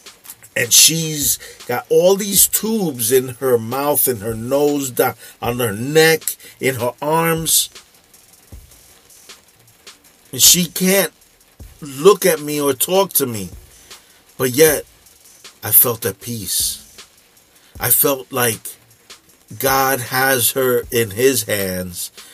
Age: 50-69